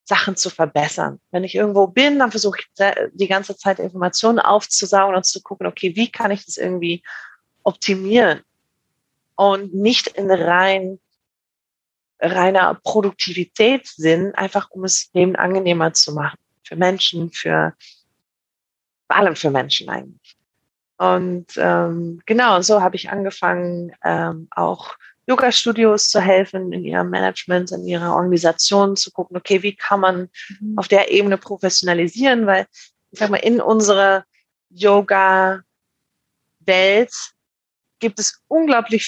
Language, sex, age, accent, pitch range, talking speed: German, female, 30-49, German, 175-205 Hz, 130 wpm